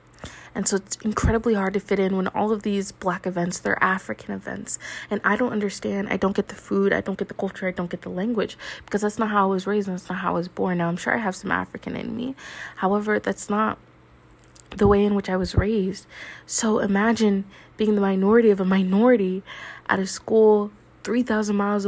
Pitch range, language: 175-205 Hz, English